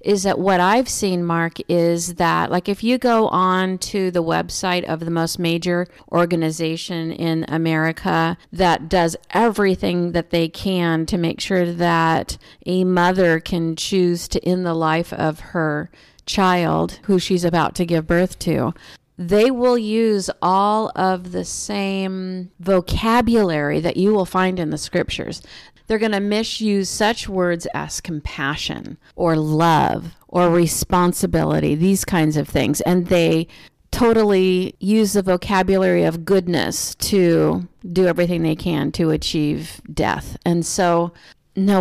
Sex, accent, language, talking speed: female, American, English, 145 wpm